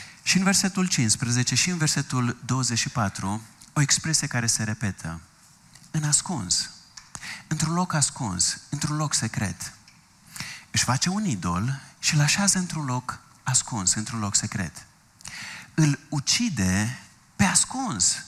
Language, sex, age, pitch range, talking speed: Romanian, male, 30-49, 115-170 Hz, 125 wpm